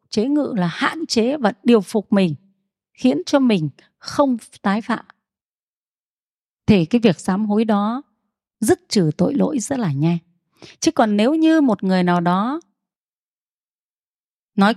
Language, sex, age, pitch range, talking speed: Vietnamese, female, 20-39, 190-270 Hz, 150 wpm